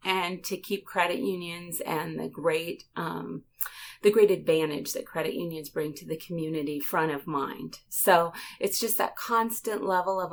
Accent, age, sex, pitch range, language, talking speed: American, 30-49, female, 165-210 Hz, English, 165 wpm